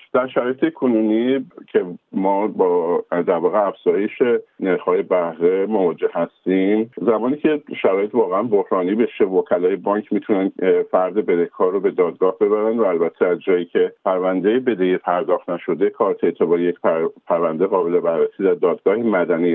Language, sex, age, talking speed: Persian, male, 50-69, 145 wpm